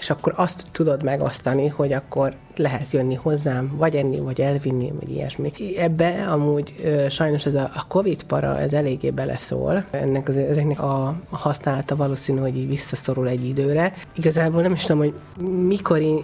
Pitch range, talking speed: 140-160 Hz, 155 wpm